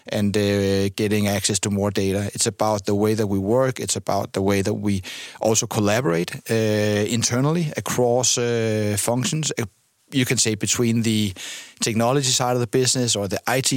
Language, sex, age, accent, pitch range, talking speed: Dutch, male, 30-49, Danish, 105-120 Hz, 175 wpm